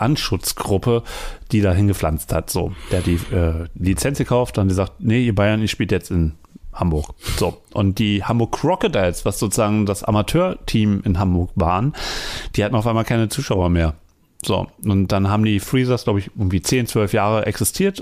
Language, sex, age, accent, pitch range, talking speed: German, male, 40-59, German, 100-130 Hz, 180 wpm